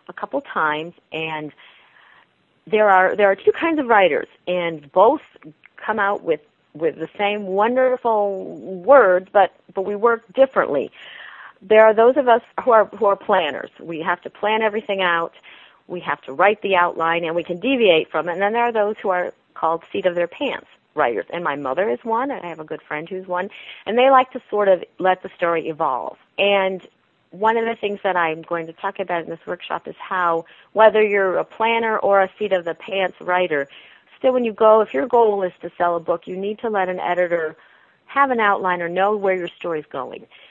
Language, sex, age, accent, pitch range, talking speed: English, female, 40-59, American, 175-220 Hz, 210 wpm